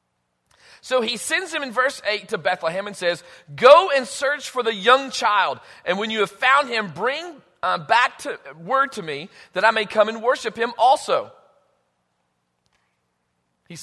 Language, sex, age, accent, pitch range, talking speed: English, male, 40-59, American, 180-265 Hz, 170 wpm